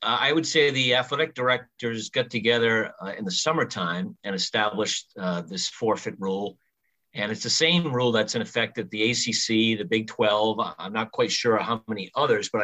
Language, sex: English, male